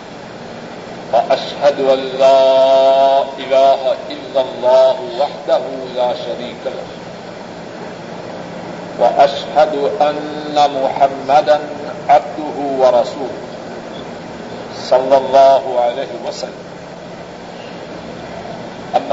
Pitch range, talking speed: 135-150 Hz, 60 wpm